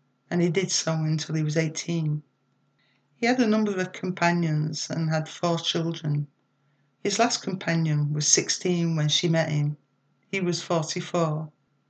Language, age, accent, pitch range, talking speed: English, 60-79, British, 150-175 Hz, 150 wpm